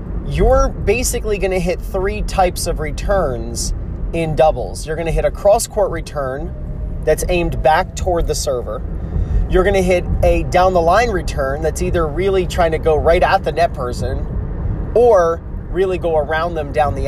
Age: 30-49